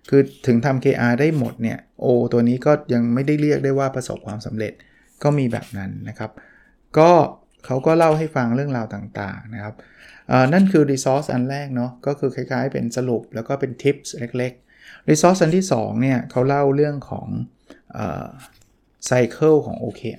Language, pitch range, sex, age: Thai, 115-140 Hz, male, 20-39